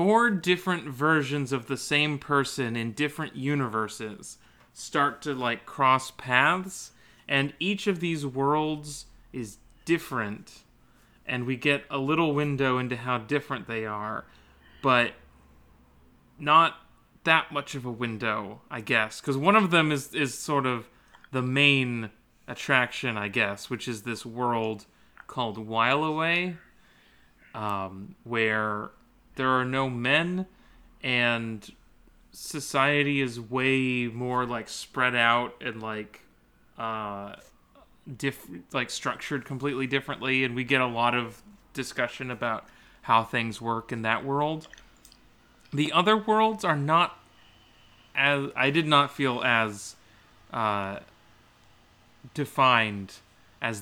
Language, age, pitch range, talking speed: English, 30-49, 115-145 Hz, 125 wpm